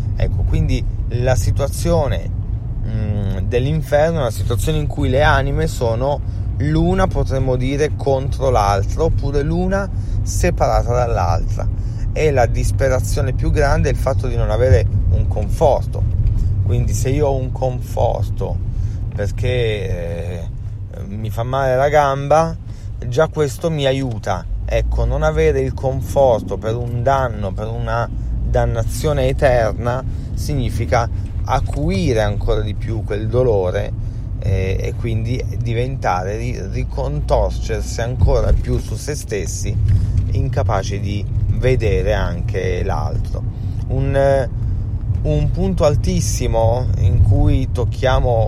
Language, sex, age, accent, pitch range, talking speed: Italian, male, 30-49, native, 100-120 Hz, 115 wpm